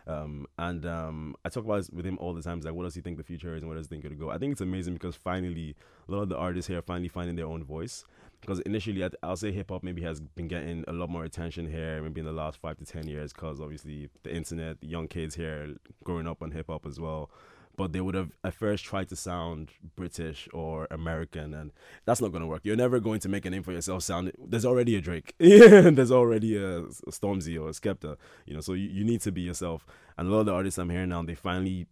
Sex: male